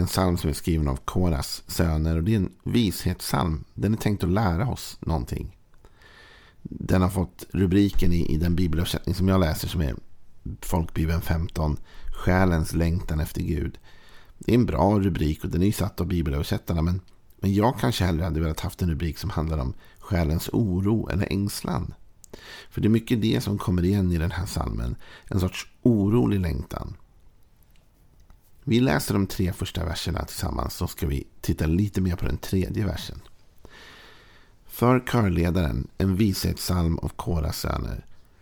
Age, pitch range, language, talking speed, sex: 50-69, 80-100 Hz, Swedish, 165 wpm, male